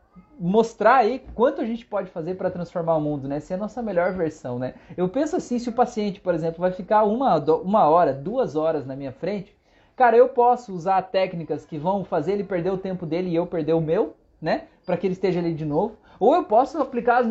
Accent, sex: Brazilian, male